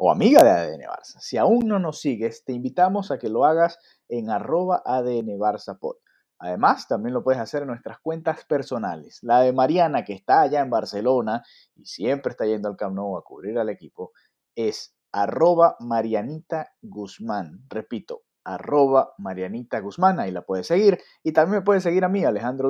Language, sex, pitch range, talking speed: Spanish, male, 115-180 Hz, 180 wpm